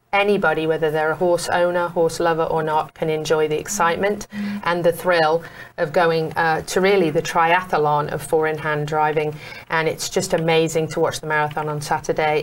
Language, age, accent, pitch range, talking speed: English, 30-49, British, 155-175 Hz, 180 wpm